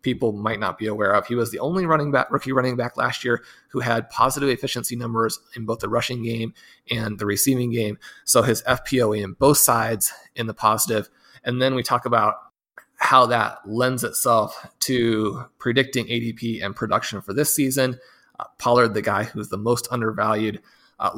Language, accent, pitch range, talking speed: English, American, 110-125 Hz, 190 wpm